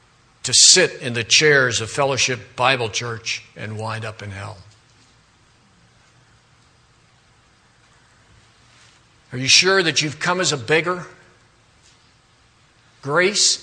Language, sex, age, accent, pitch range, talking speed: English, male, 60-79, American, 120-170 Hz, 105 wpm